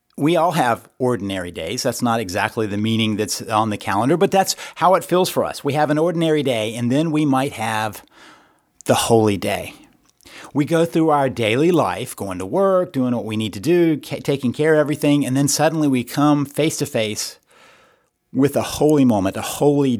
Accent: American